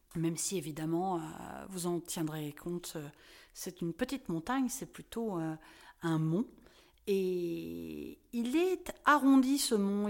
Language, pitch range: French, 180-245 Hz